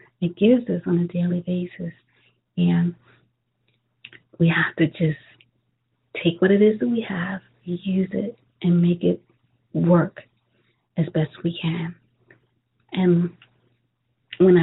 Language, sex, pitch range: English, female, 160-195 Hz